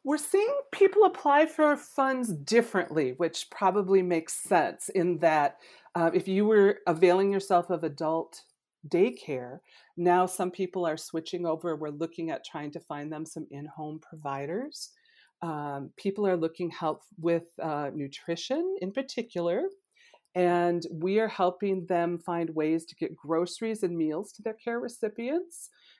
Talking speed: 150 wpm